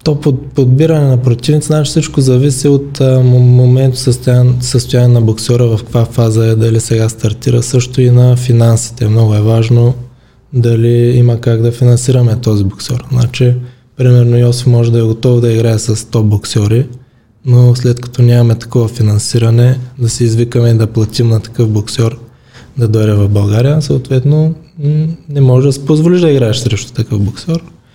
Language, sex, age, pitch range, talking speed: Bulgarian, male, 20-39, 115-130 Hz, 155 wpm